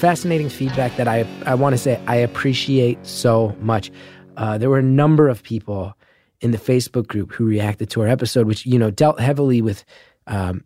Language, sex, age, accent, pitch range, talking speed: English, male, 20-39, American, 110-140 Hz, 195 wpm